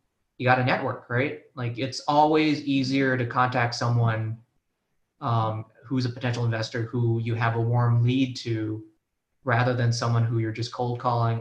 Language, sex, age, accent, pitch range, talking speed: English, male, 20-39, American, 115-135 Hz, 170 wpm